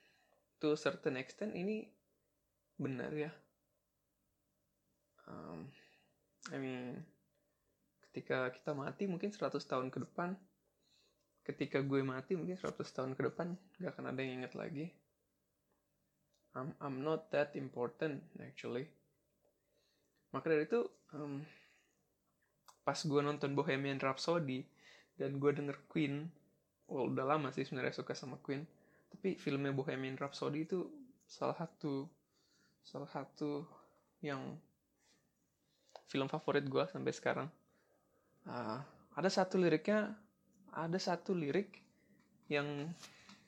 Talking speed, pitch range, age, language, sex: 115 wpm, 140-180 Hz, 20-39, Indonesian, male